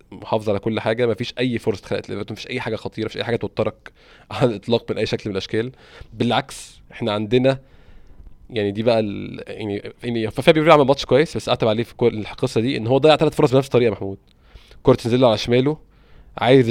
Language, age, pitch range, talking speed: Arabic, 20-39, 105-130 Hz, 210 wpm